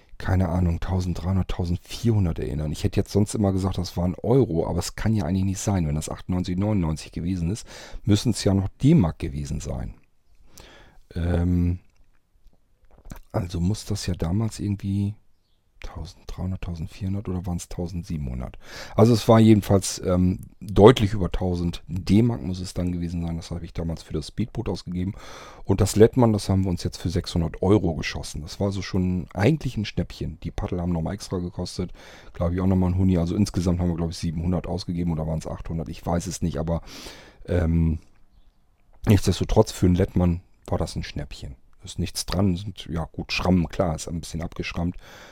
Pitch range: 85-100 Hz